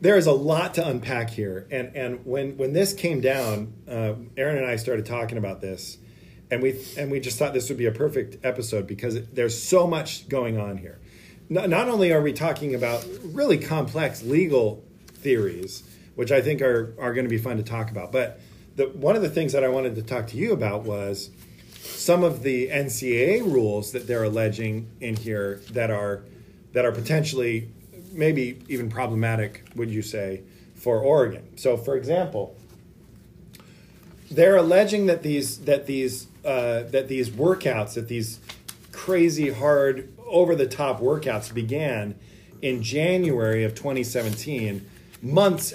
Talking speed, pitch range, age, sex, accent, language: 170 wpm, 110-145 Hz, 40-59, male, American, English